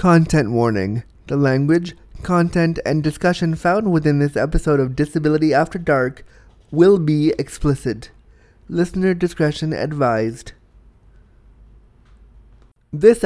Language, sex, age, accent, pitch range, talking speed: English, male, 30-49, American, 135-185 Hz, 100 wpm